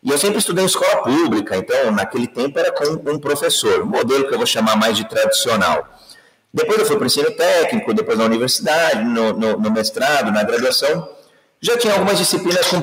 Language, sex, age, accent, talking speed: Portuguese, male, 40-59, Brazilian, 205 wpm